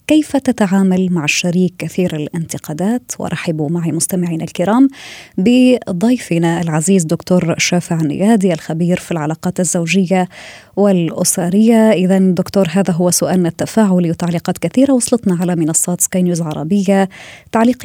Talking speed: 120 wpm